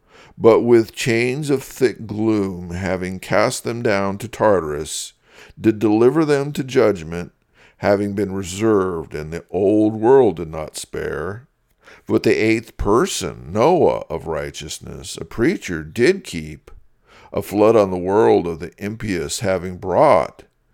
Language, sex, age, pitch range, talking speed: English, male, 50-69, 95-125 Hz, 140 wpm